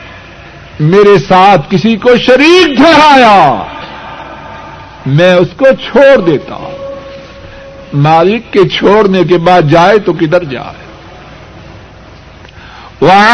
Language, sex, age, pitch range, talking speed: Urdu, male, 60-79, 180-290 Hz, 95 wpm